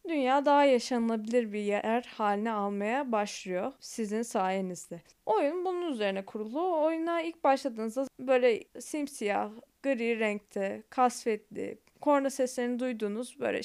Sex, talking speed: female, 120 wpm